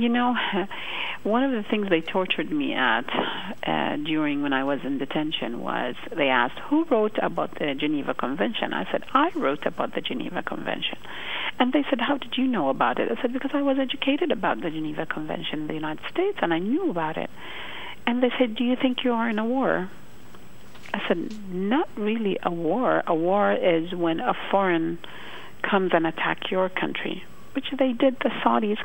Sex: female